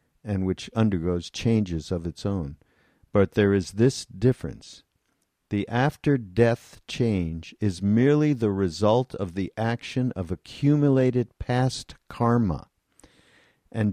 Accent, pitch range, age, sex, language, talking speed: American, 90-120 Hz, 50-69, male, English, 115 wpm